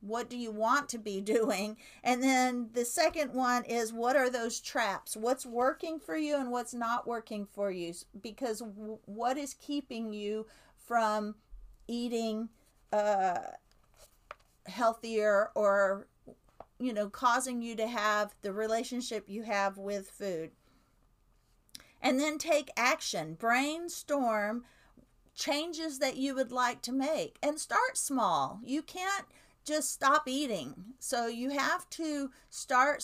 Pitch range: 215-280 Hz